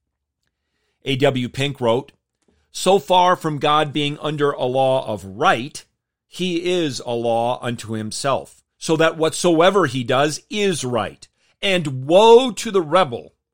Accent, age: American, 40-59